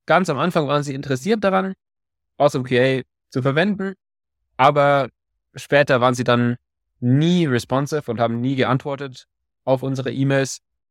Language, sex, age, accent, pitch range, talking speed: German, male, 20-39, German, 115-140 Hz, 145 wpm